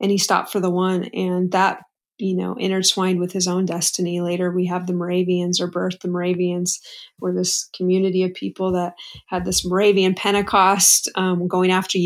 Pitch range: 185-210 Hz